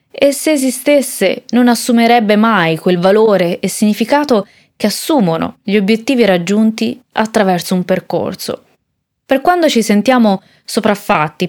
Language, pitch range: Italian, 185-235 Hz